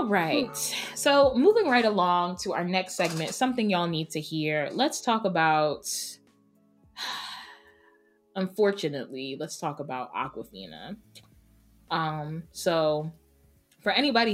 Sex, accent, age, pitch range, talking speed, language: female, American, 20-39, 150-190 Hz, 115 wpm, English